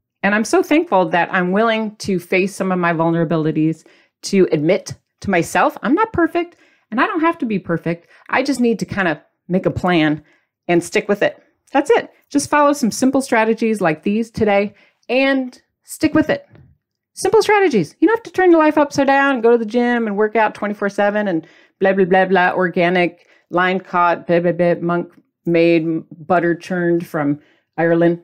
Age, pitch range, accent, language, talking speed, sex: 40-59, 170-255 Hz, American, English, 195 wpm, female